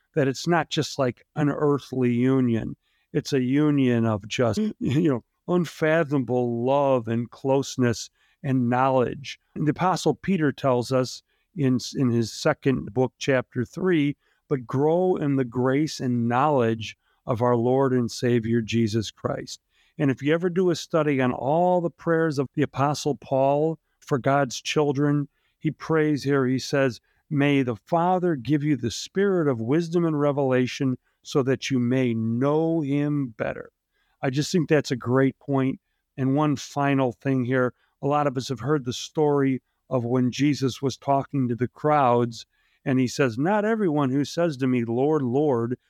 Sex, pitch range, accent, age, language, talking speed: male, 125-150 Hz, American, 50-69, English, 165 wpm